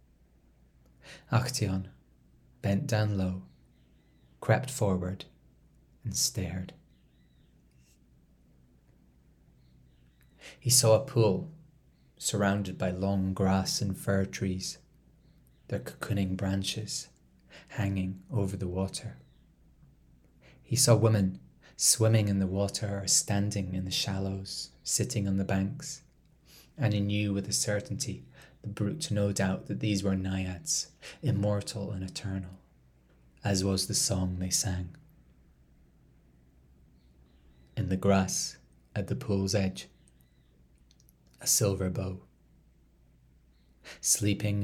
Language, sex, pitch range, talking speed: English, male, 65-100 Hz, 100 wpm